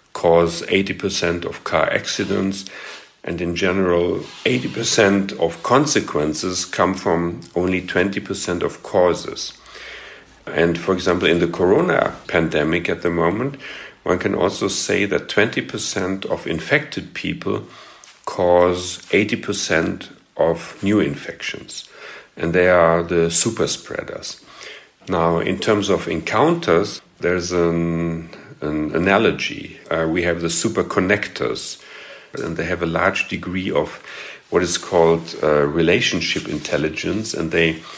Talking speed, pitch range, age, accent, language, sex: 120 wpm, 85-95 Hz, 50-69, German, English, male